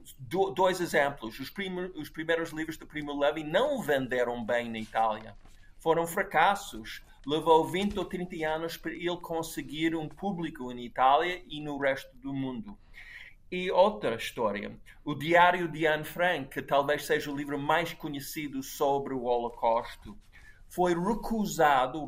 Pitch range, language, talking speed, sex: 140-165 Hz, Portuguese, 150 wpm, male